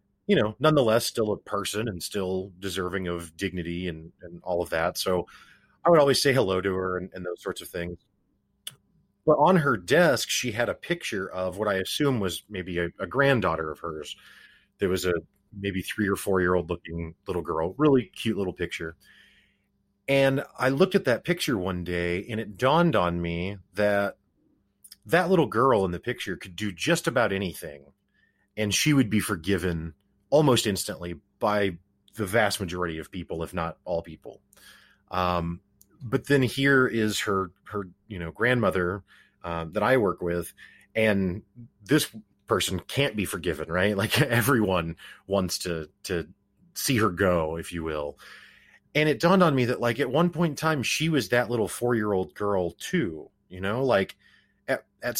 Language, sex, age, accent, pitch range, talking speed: English, male, 30-49, American, 90-120 Hz, 180 wpm